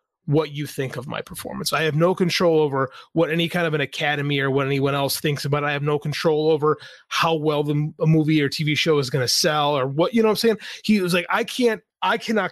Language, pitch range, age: English, 145-195 Hz, 30-49